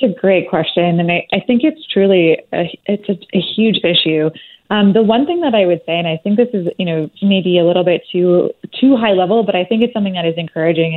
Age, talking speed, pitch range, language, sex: 20-39, 255 wpm, 175-210 Hz, English, female